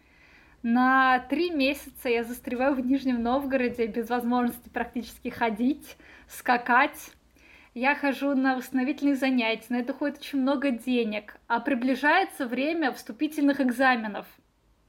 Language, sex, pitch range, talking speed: Russian, female, 245-290 Hz, 115 wpm